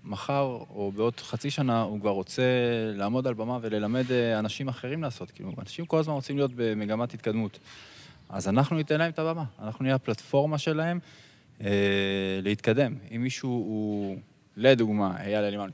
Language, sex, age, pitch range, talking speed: Hebrew, male, 20-39, 105-130 Hz, 155 wpm